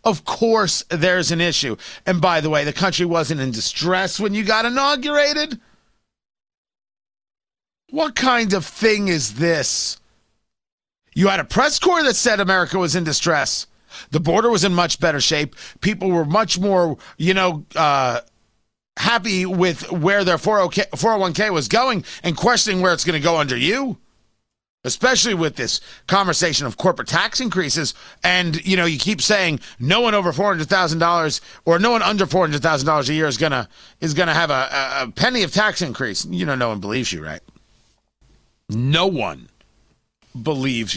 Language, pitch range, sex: English, 150-205 Hz, male